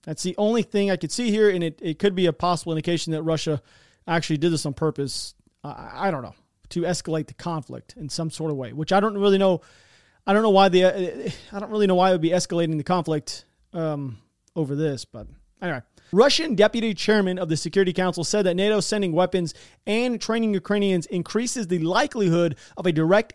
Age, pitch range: 30-49, 160-205 Hz